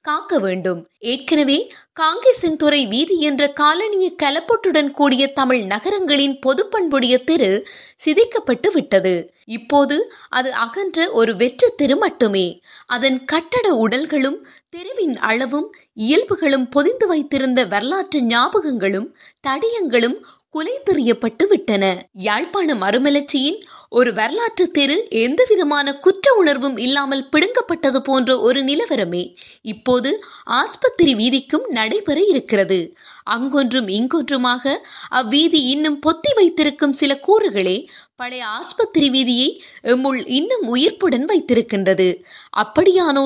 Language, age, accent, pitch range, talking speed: Tamil, 20-39, native, 250-365 Hz, 70 wpm